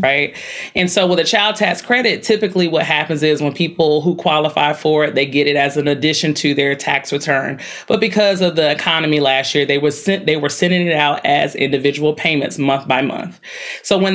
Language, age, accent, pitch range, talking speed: English, 30-49, American, 150-185 Hz, 215 wpm